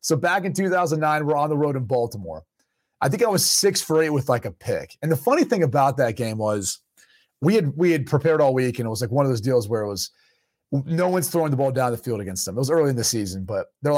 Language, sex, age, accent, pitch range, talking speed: English, male, 30-49, American, 125-155 Hz, 280 wpm